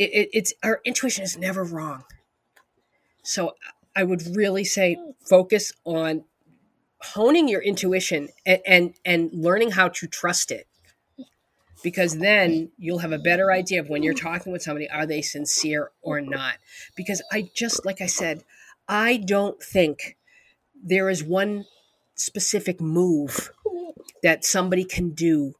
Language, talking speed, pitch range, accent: English, 145 wpm, 165-205 Hz, American